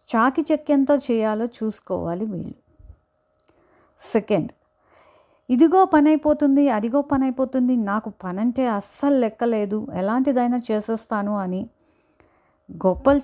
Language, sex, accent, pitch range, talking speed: Telugu, female, native, 200-275 Hz, 80 wpm